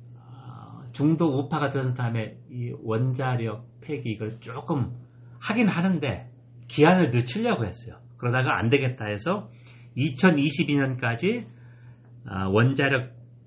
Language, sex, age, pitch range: Korean, male, 40-59, 115-135 Hz